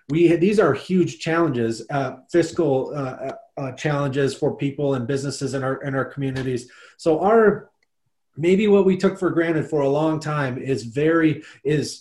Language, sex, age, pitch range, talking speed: English, male, 30-49, 140-165 Hz, 175 wpm